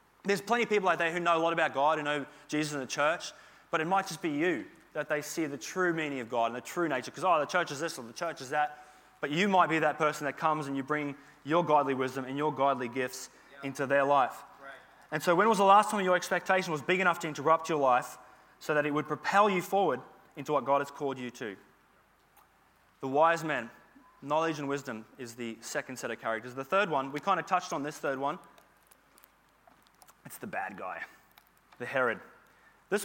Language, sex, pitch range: English, male, 145-185 Hz